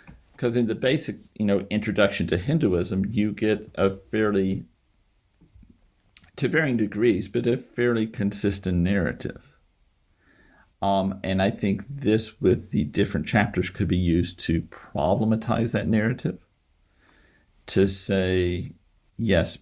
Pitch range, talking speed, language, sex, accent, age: 85-105 Hz, 120 wpm, English, male, American, 50-69